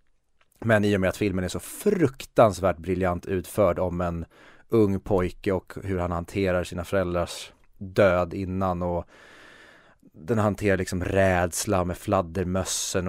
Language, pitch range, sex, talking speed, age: Swedish, 90-100 Hz, male, 140 wpm, 30-49